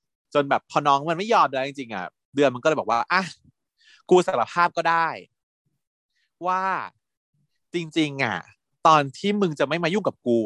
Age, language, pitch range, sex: 20-39, Thai, 115-165 Hz, male